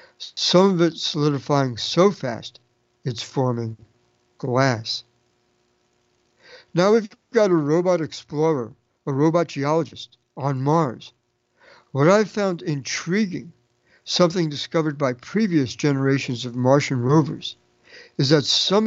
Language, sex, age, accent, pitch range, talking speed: English, male, 60-79, American, 120-170 Hz, 110 wpm